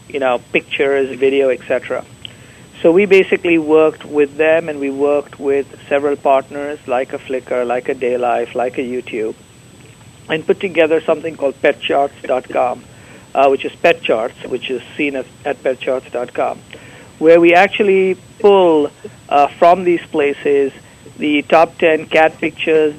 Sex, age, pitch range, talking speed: male, 50-69, 130-155 Hz, 140 wpm